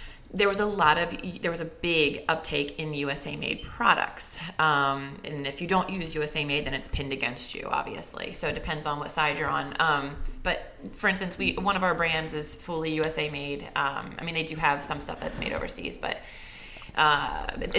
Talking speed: 210 wpm